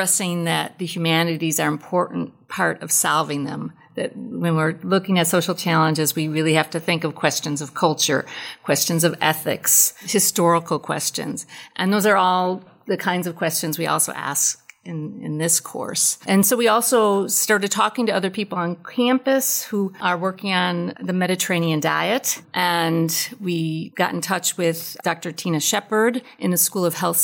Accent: American